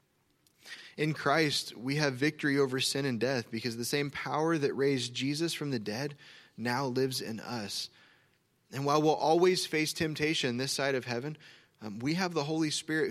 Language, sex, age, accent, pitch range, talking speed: English, male, 20-39, American, 120-150 Hz, 180 wpm